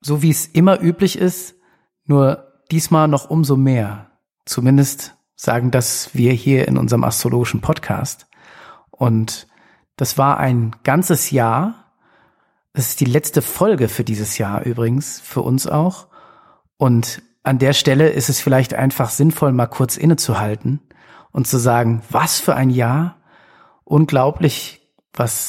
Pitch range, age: 125-155 Hz, 50-69